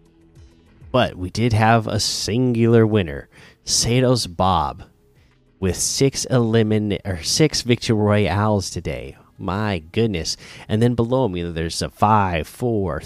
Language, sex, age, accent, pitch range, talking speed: English, male, 30-49, American, 90-115 Hz, 125 wpm